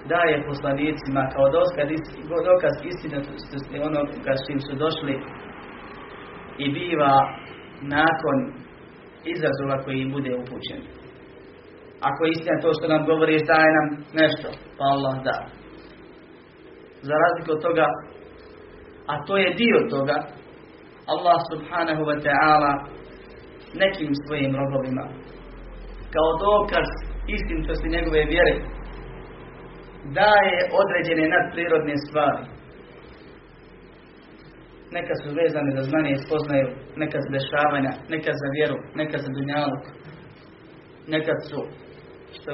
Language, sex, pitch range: Croatian, male, 140-160 Hz